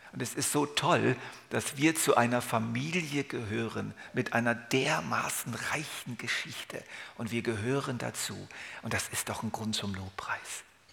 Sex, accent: male, German